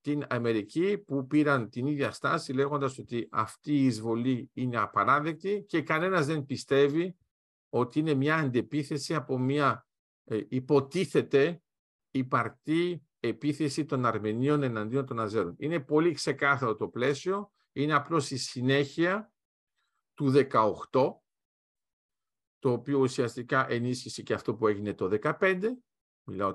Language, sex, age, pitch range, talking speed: Greek, male, 50-69, 125-165 Hz, 120 wpm